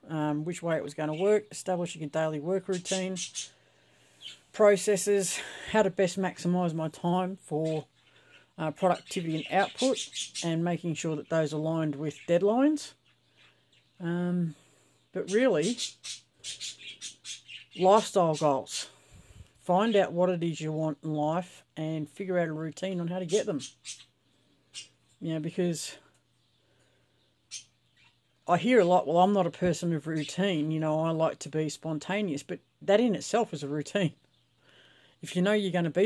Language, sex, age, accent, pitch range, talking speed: English, female, 50-69, Australian, 150-190 Hz, 155 wpm